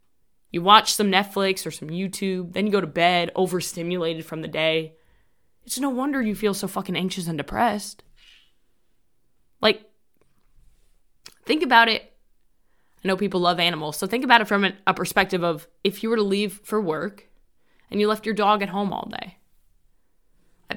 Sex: female